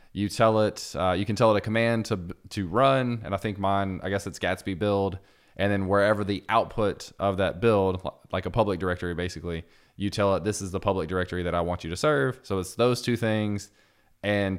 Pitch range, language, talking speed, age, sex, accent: 90-105 Hz, English, 225 wpm, 20-39, male, American